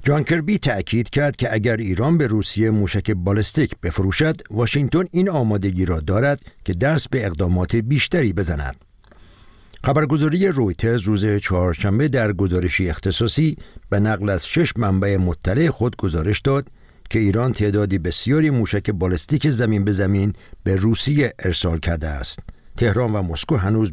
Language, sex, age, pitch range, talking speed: Persian, male, 60-79, 95-120 Hz, 145 wpm